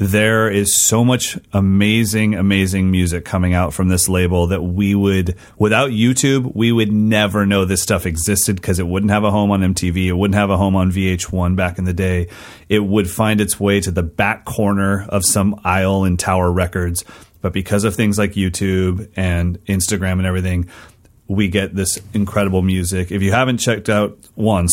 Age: 30-49